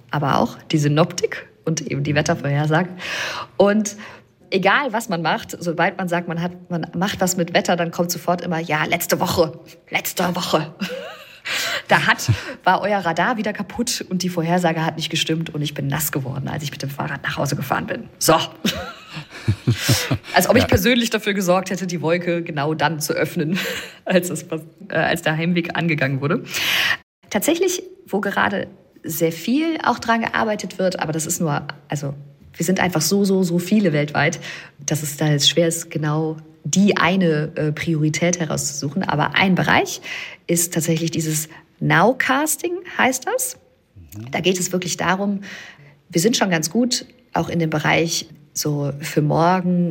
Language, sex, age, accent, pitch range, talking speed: German, female, 40-59, German, 155-190 Hz, 165 wpm